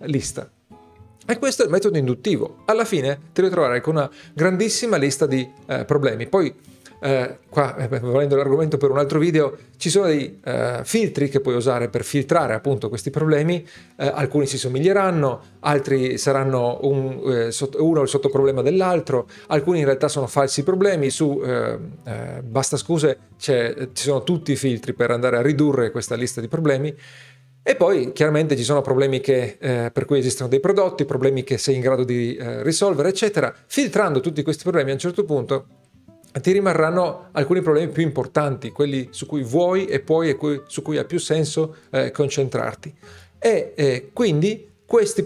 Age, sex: 40-59, male